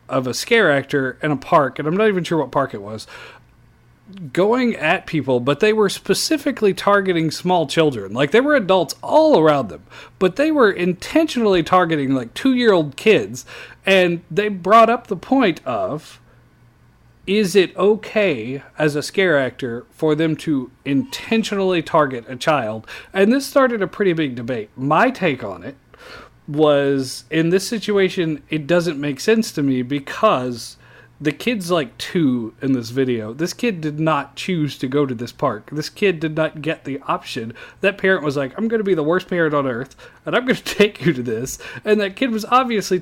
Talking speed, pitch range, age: 185 wpm, 140-200 Hz, 40-59